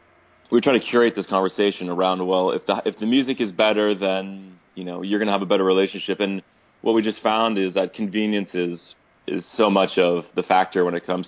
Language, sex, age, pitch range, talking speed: English, male, 20-39, 90-110 Hz, 230 wpm